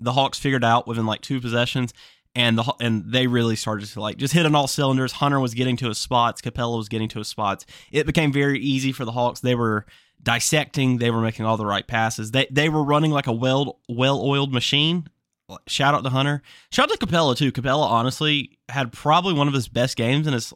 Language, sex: English, male